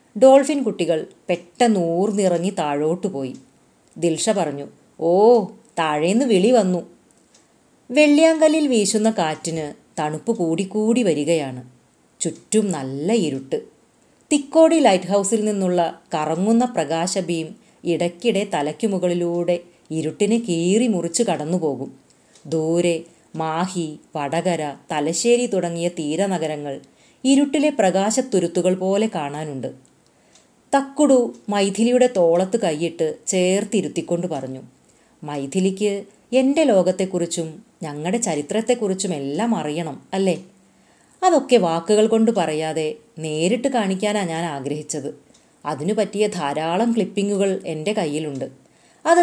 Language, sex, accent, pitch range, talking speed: Malayalam, female, native, 160-220 Hz, 85 wpm